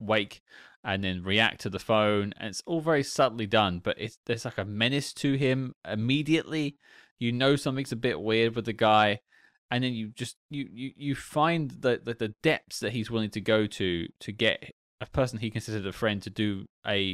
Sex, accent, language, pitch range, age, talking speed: male, British, English, 100-130 Hz, 20-39, 210 wpm